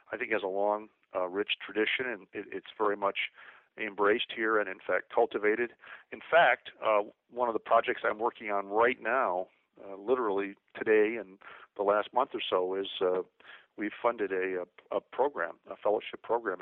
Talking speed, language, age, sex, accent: 190 wpm, English, 50-69, male, American